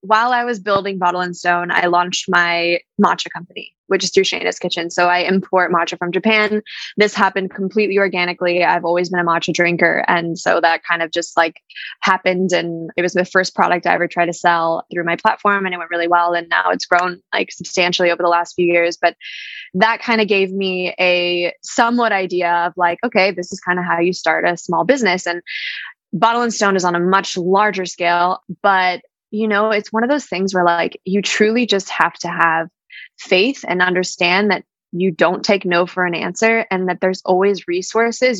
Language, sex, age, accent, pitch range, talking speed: English, female, 20-39, American, 175-200 Hz, 210 wpm